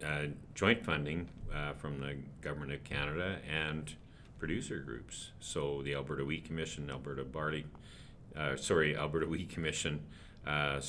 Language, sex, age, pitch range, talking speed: English, male, 40-59, 70-80 Hz, 140 wpm